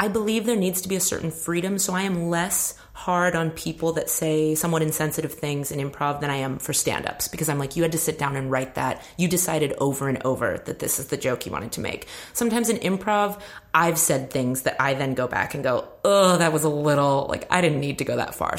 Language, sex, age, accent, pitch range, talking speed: English, female, 30-49, American, 145-180 Hz, 255 wpm